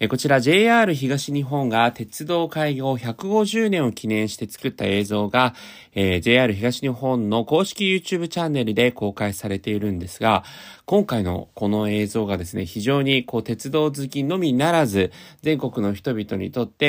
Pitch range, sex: 105-155 Hz, male